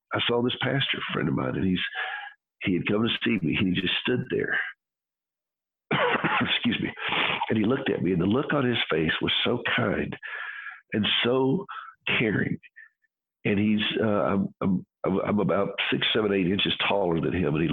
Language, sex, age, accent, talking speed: English, male, 60-79, American, 185 wpm